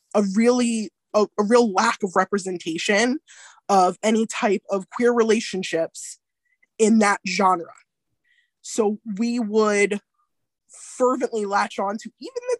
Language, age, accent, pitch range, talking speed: English, 20-39, American, 200-250 Hz, 125 wpm